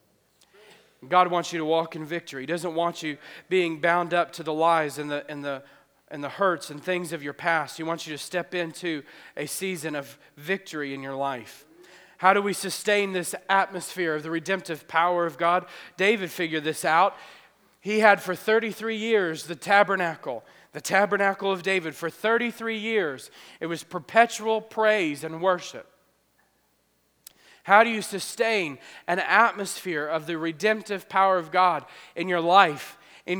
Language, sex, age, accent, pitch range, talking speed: English, male, 40-59, American, 165-200 Hz, 170 wpm